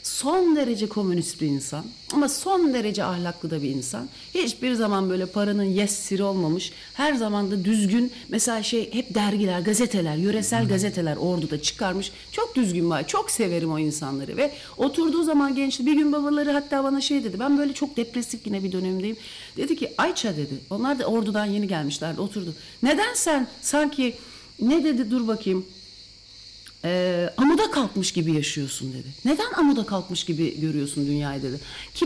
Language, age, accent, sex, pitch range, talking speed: English, 60-79, Turkish, female, 170-275 Hz, 160 wpm